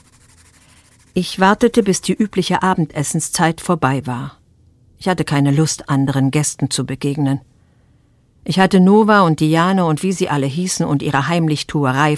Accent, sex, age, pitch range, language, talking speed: German, female, 50-69, 110-170 Hz, German, 145 wpm